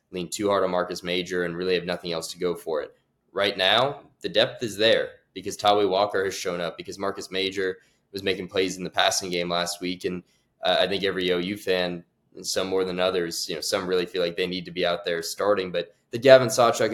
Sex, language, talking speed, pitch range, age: male, English, 240 wpm, 90-115 Hz, 20-39